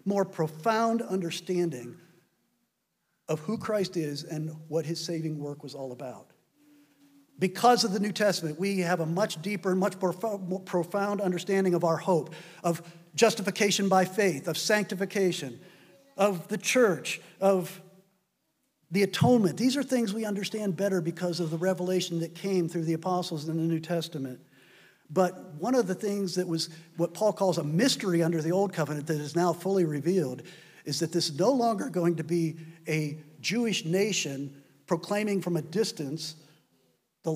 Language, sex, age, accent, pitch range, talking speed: English, male, 50-69, American, 160-200 Hz, 165 wpm